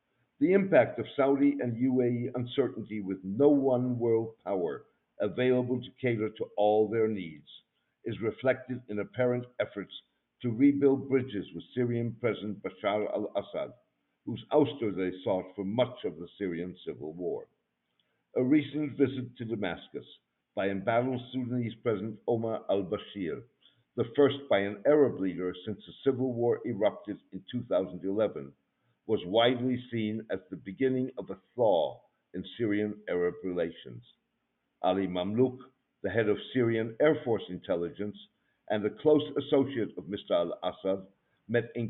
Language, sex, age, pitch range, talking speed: English, male, 60-79, 100-130 Hz, 140 wpm